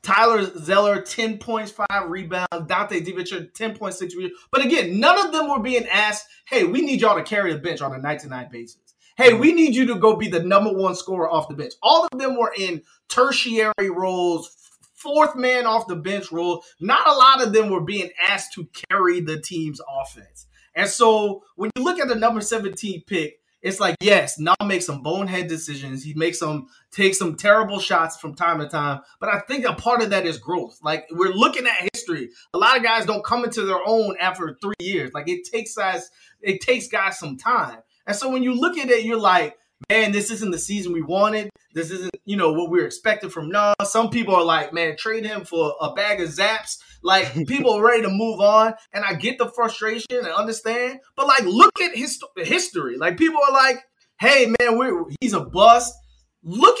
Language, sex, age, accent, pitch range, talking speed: English, male, 30-49, American, 175-235 Hz, 210 wpm